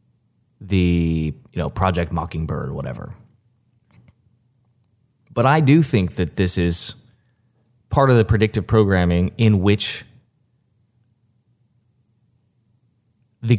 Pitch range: 100-125 Hz